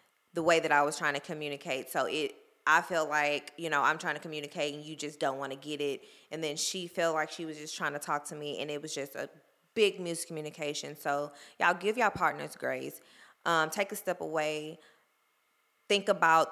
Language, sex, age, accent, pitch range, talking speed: English, female, 20-39, American, 150-175 Hz, 220 wpm